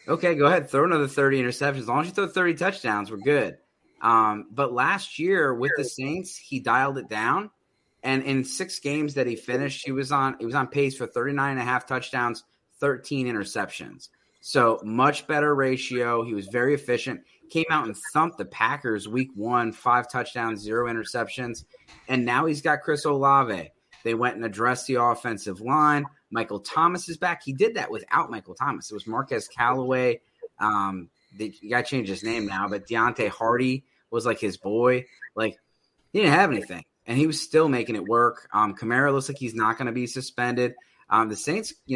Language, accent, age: English, American, 30-49